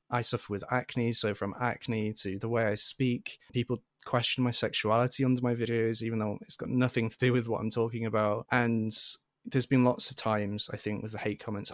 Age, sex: 20-39, male